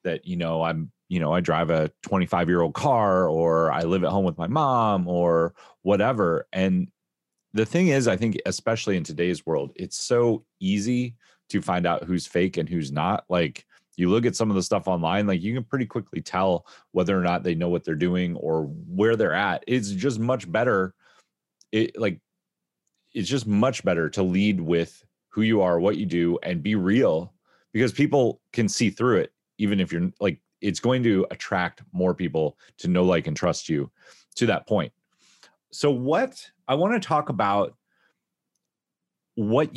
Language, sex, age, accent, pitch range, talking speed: English, male, 30-49, American, 90-125 Hz, 190 wpm